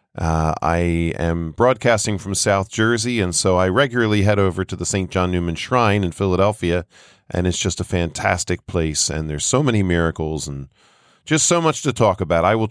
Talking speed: 195 wpm